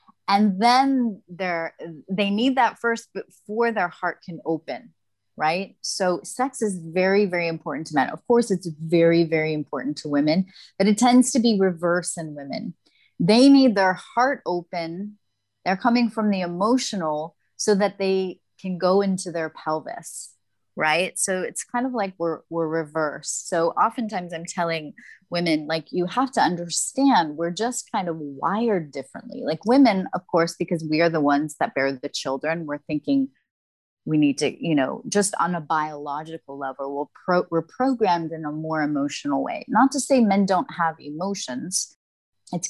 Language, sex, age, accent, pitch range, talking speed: English, female, 30-49, American, 150-200 Hz, 170 wpm